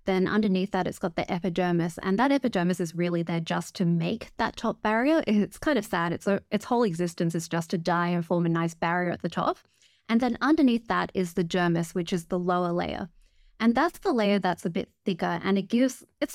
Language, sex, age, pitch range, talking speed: English, female, 20-39, 180-225 Hz, 230 wpm